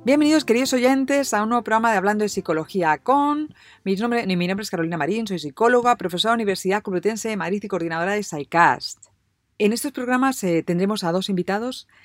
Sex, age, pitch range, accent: female, 40-59, 155-210 Hz, Spanish